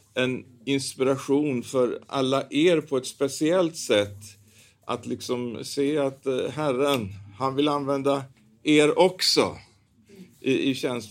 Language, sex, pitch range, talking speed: Swedish, male, 110-140 Hz, 120 wpm